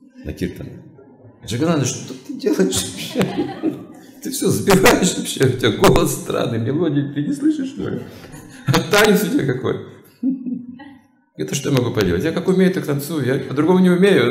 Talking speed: 170 wpm